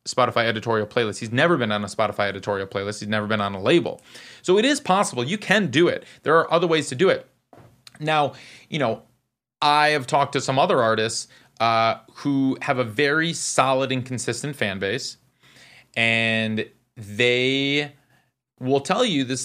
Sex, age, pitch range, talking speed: male, 30-49, 115-145 Hz, 180 wpm